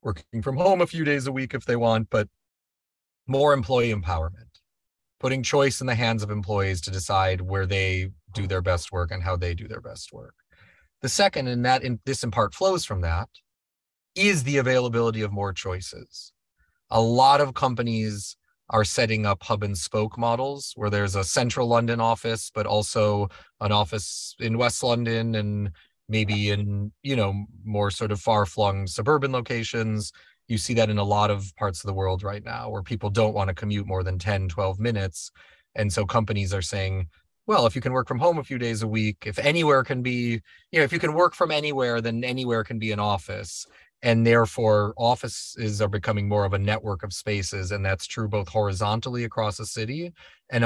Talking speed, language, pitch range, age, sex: 195 wpm, English, 100-120 Hz, 30-49, male